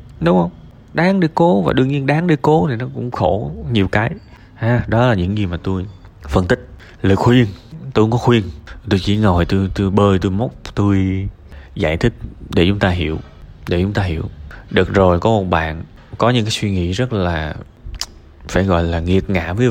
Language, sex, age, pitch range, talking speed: Vietnamese, male, 20-39, 90-120 Hz, 210 wpm